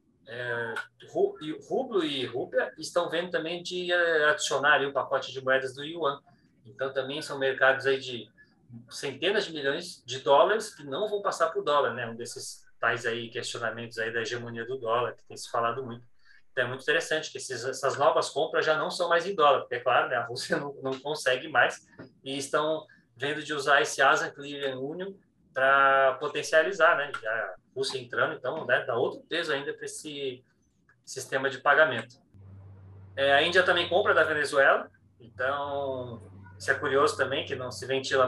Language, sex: Portuguese, male